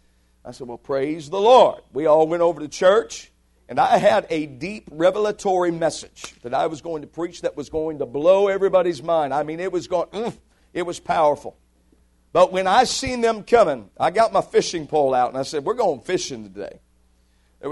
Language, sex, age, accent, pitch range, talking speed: English, male, 50-69, American, 135-195 Hz, 205 wpm